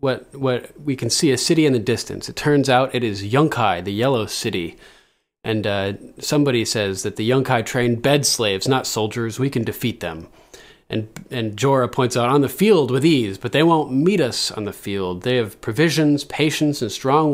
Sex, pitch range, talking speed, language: male, 110-145 Hz, 205 wpm, English